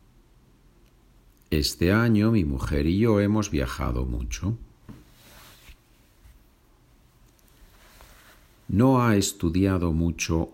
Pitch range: 80-110 Hz